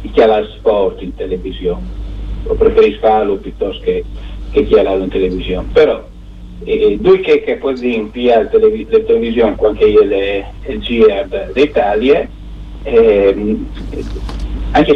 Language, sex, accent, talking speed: Italian, male, native, 140 wpm